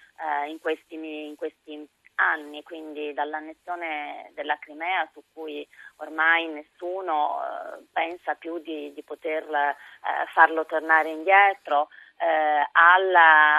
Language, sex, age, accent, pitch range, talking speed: Italian, female, 30-49, native, 155-175 Hz, 115 wpm